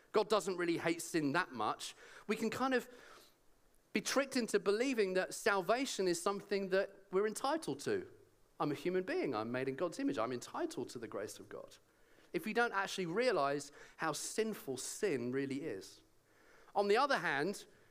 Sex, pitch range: male, 150-220 Hz